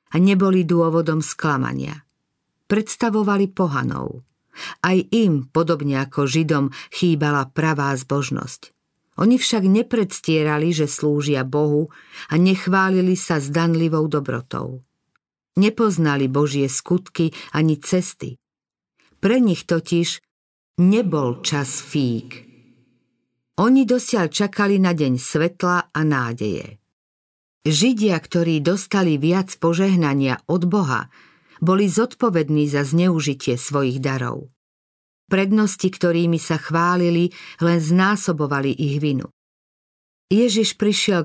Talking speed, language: 95 wpm, Slovak